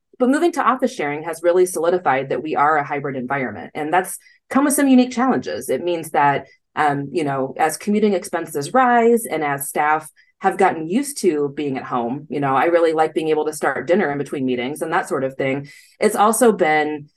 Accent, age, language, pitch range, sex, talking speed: American, 20-39, English, 145-210 Hz, female, 215 wpm